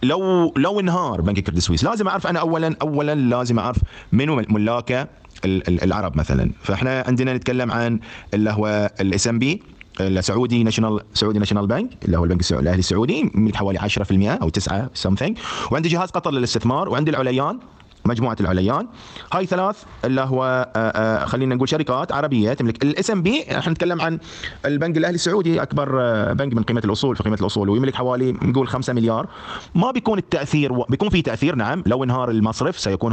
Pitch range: 105-150 Hz